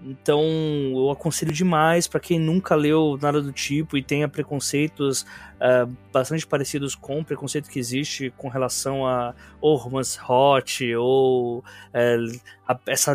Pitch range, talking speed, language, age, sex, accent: 130-150 Hz, 130 wpm, Portuguese, 20-39, male, Brazilian